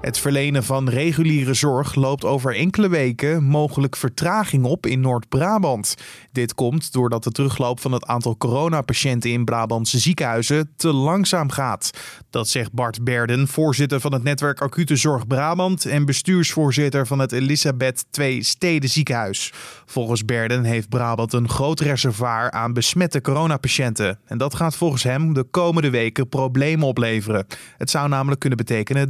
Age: 20-39